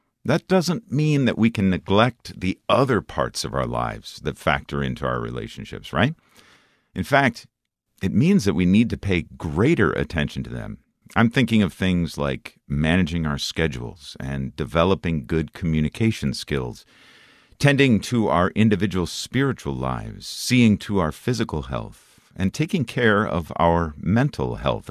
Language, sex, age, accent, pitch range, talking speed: English, male, 50-69, American, 75-110 Hz, 150 wpm